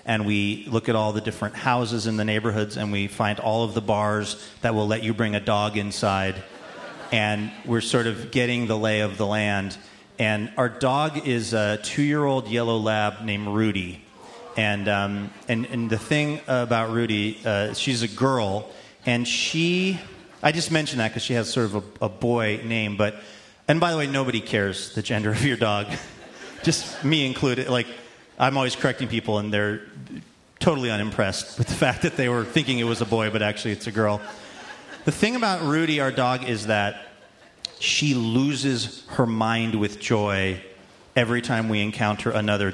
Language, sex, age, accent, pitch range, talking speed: English, male, 30-49, American, 105-125 Hz, 185 wpm